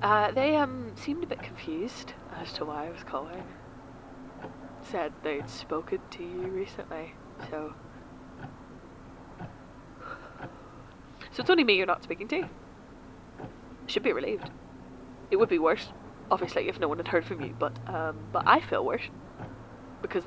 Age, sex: 20-39, female